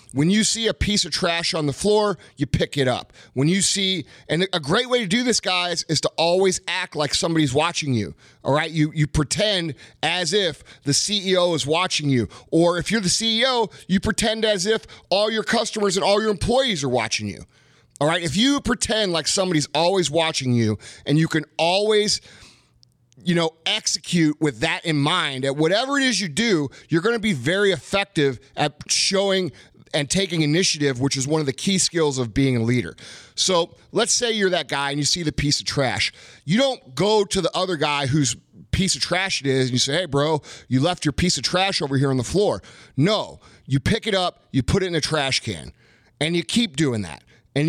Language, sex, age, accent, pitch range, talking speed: English, male, 30-49, American, 140-190 Hz, 220 wpm